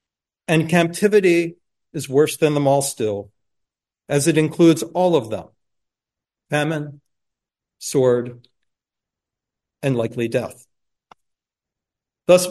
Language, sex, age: English, male, 50-69